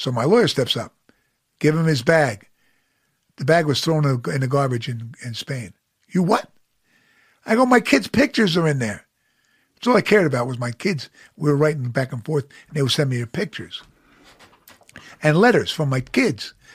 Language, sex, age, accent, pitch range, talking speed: English, male, 50-69, American, 130-170 Hz, 195 wpm